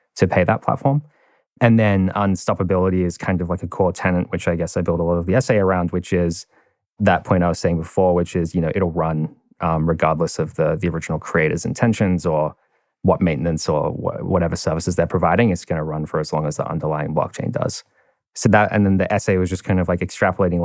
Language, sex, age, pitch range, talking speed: English, male, 20-39, 85-100 Hz, 230 wpm